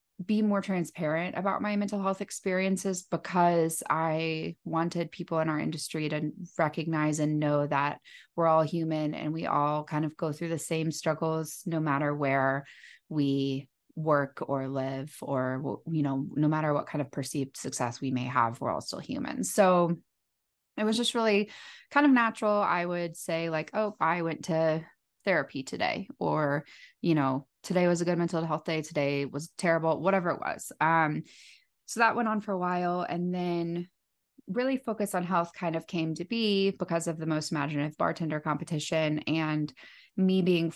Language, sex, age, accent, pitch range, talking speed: English, female, 20-39, American, 150-185 Hz, 175 wpm